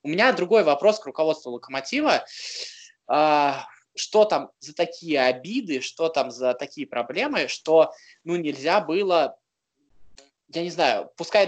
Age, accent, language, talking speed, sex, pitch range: 20-39, native, Russian, 130 wpm, male, 150-190 Hz